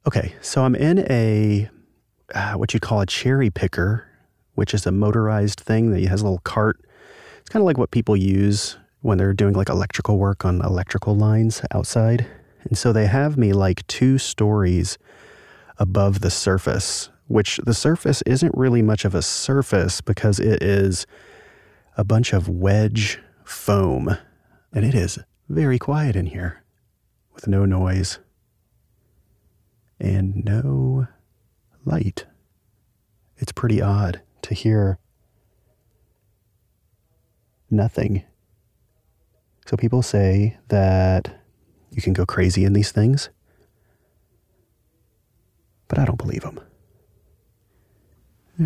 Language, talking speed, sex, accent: English, 125 wpm, male, American